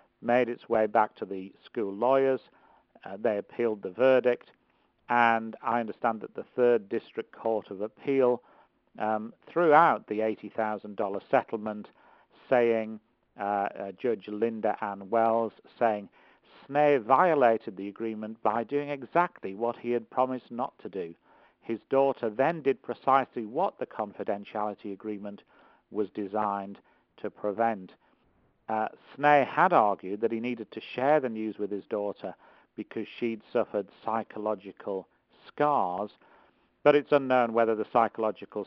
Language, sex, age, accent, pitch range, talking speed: English, male, 50-69, British, 105-120 Hz, 135 wpm